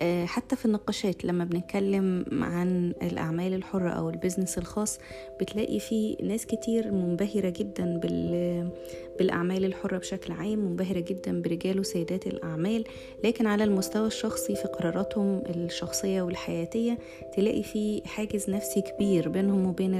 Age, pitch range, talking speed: 20-39, 170-210 Hz, 125 wpm